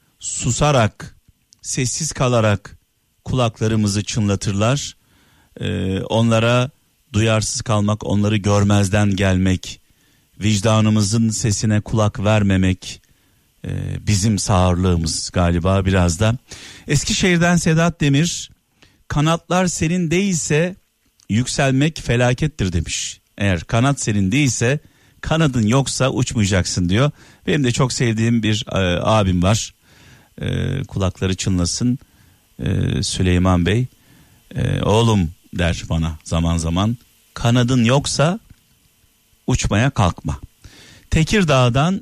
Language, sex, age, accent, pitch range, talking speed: Turkish, male, 50-69, native, 105-140 Hz, 95 wpm